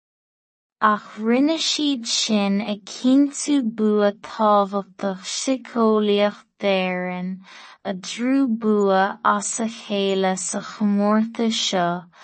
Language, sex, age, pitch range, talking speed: English, female, 20-39, 195-225 Hz, 75 wpm